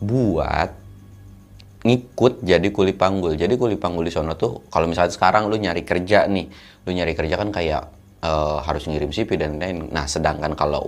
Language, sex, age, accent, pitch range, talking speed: Indonesian, male, 30-49, native, 75-95 Hz, 175 wpm